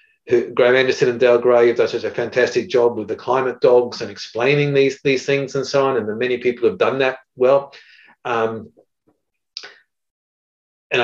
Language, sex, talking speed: English, male, 185 wpm